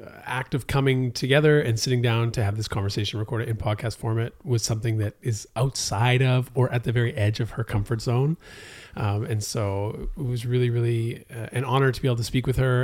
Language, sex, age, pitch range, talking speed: English, male, 30-49, 110-135 Hz, 215 wpm